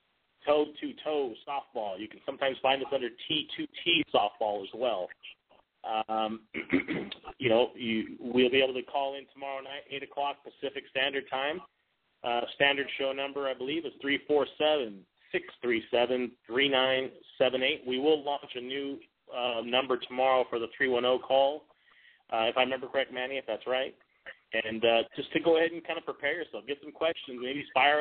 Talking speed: 165 wpm